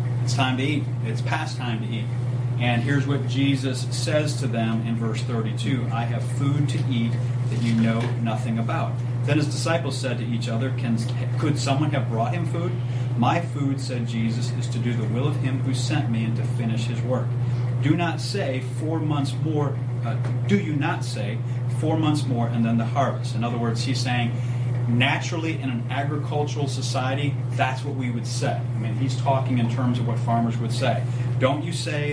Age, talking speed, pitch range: 40-59, 205 wpm, 120-130 Hz